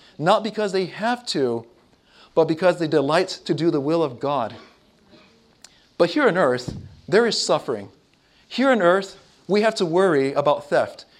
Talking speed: 165 wpm